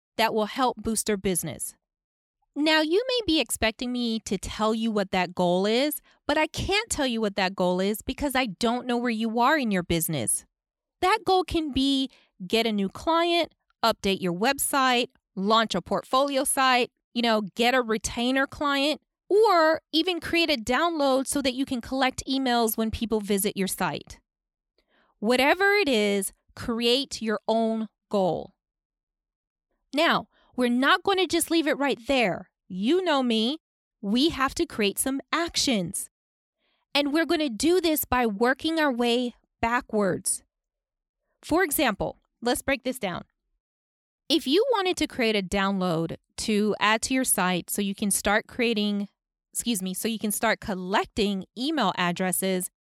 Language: English